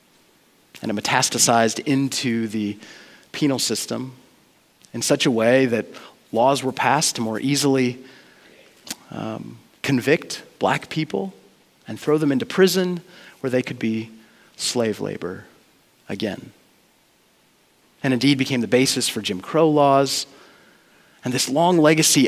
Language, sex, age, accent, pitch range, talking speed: English, male, 30-49, American, 125-160 Hz, 125 wpm